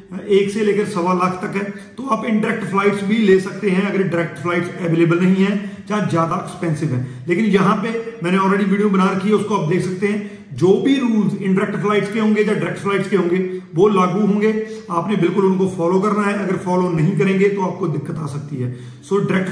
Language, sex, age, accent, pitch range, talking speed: Hindi, male, 40-59, native, 185-215 Hz, 225 wpm